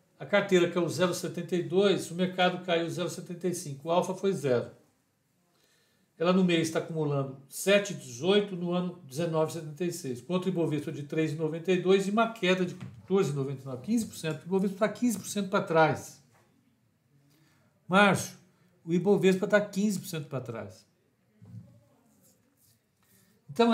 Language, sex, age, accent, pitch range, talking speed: Portuguese, male, 60-79, Brazilian, 135-185 Hz, 115 wpm